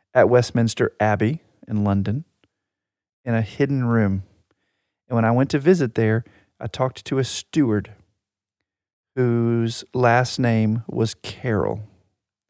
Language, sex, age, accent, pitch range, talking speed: English, male, 40-59, American, 105-120 Hz, 125 wpm